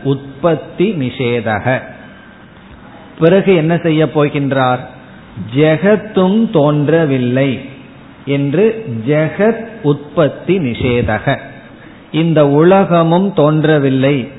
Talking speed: 55 wpm